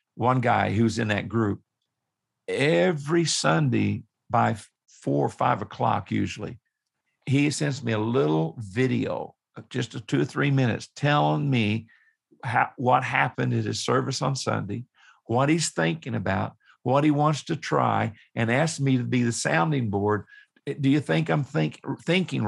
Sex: male